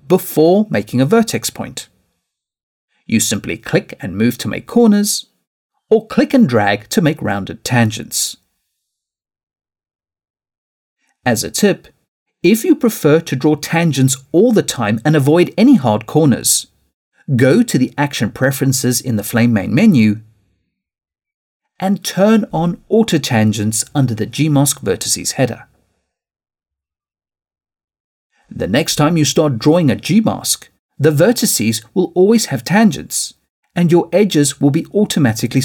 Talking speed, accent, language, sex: 130 wpm, British, English, male